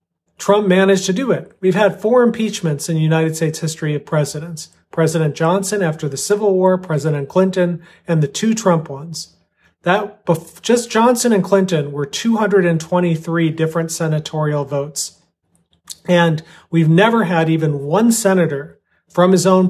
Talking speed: 150 wpm